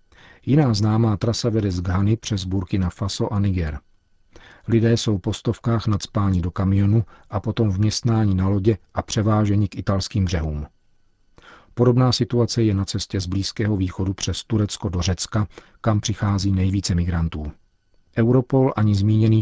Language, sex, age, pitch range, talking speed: Czech, male, 40-59, 95-110 Hz, 150 wpm